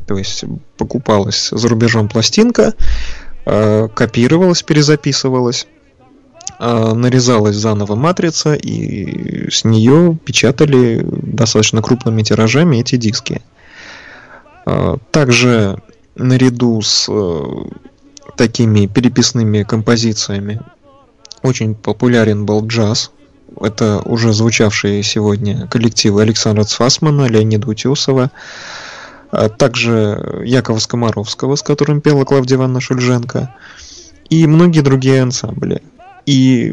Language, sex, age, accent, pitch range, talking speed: Russian, male, 20-39, native, 110-135 Hz, 85 wpm